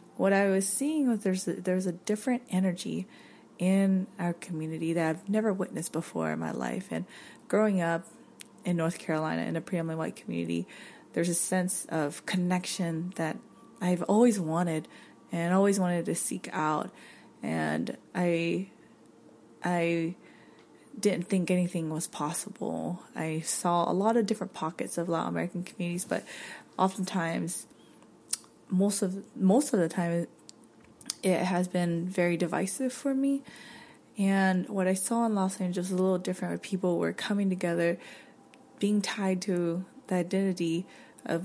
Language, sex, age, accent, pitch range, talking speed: English, female, 20-39, American, 170-195 Hz, 150 wpm